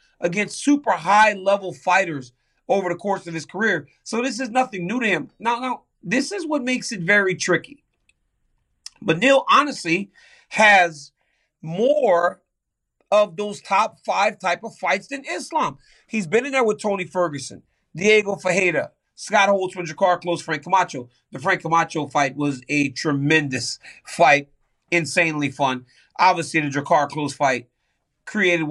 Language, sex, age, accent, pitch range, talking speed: English, male, 40-59, American, 145-190 Hz, 150 wpm